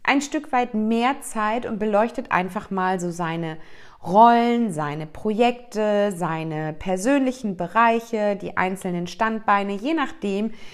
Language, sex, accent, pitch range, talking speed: German, female, German, 185-235 Hz, 125 wpm